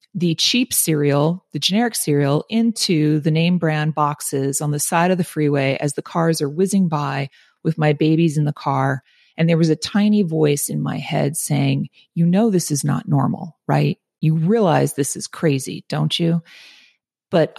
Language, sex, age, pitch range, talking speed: English, female, 40-59, 150-195 Hz, 185 wpm